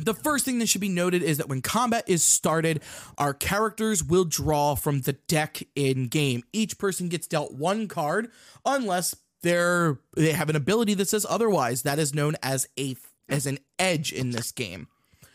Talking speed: 190 wpm